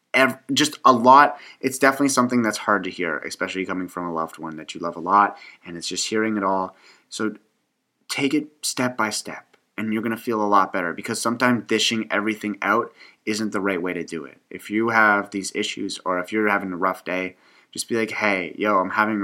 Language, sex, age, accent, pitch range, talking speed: English, male, 30-49, American, 95-110 Hz, 220 wpm